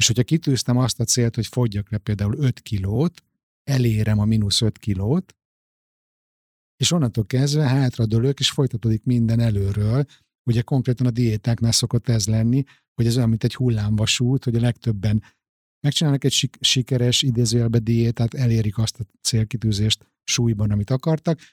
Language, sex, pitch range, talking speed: Hungarian, male, 115-135 Hz, 150 wpm